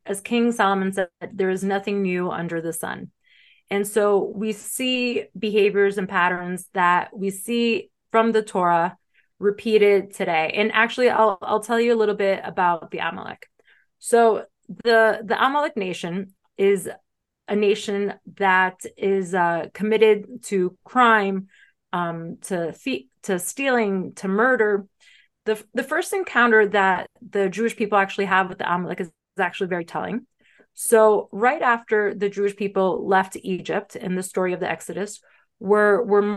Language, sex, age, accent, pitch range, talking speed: English, female, 30-49, American, 190-220 Hz, 155 wpm